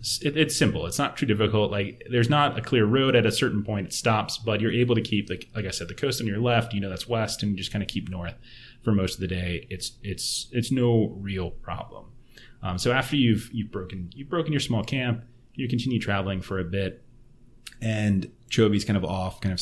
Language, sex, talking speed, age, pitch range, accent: English, male, 240 wpm, 20-39, 95-120 Hz, American